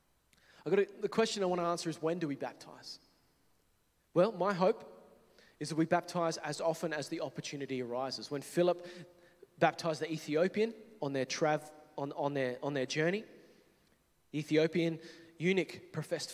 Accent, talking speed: Australian, 135 wpm